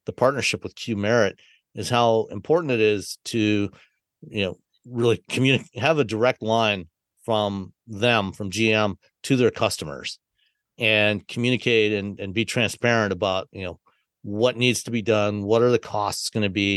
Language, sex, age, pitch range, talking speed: English, male, 50-69, 95-115 Hz, 170 wpm